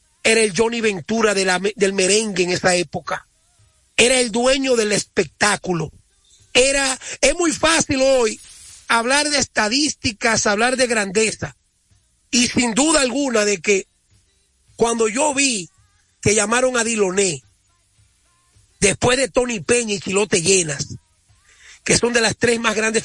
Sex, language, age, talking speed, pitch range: male, Spanish, 40-59, 140 wpm, 200-255 Hz